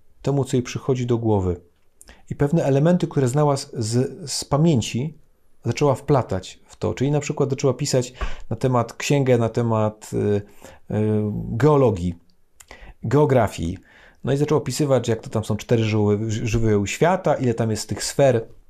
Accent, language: native, Polish